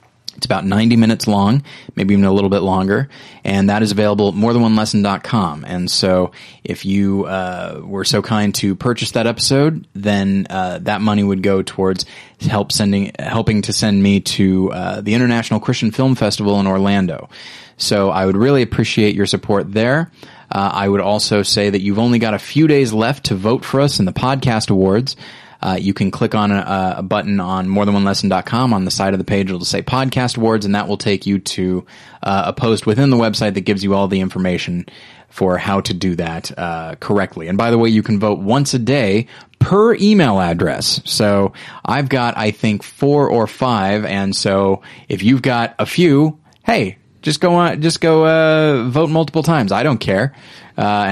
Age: 20-39